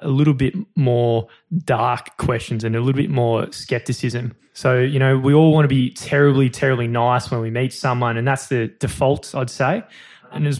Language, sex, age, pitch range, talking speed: English, male, 20-39, 120-145 Hz, 205 wpm